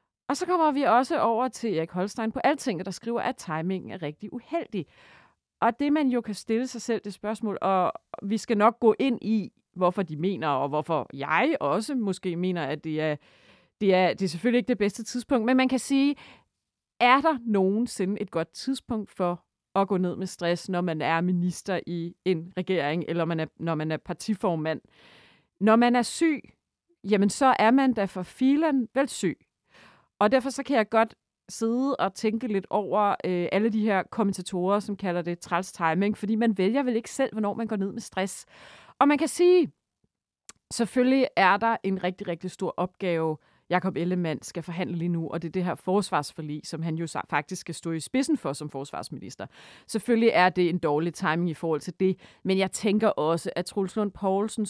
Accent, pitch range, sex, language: native, 175-230 Hz, female, Danish